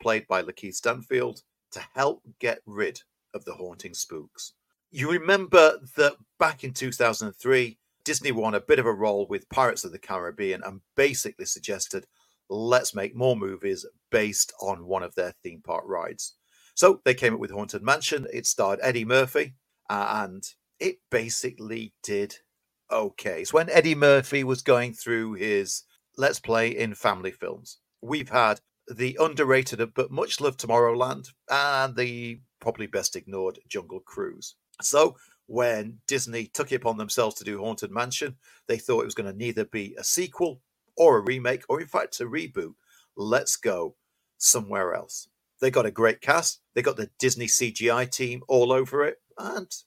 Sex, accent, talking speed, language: male, British, 160 wpm, English